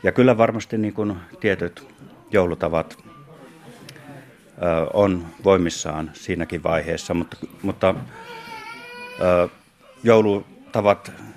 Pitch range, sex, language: 85-105 Hz, male, Finnish